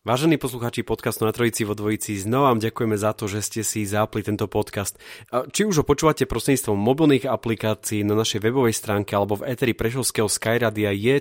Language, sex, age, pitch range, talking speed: Slovak, male, 30-49, 100-125 Hz, 185 wpm